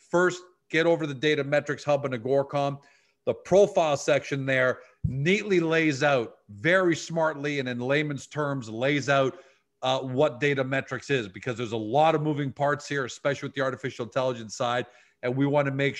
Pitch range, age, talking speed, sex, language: 130-150 Hz, 40-59, 175 wpm, male, English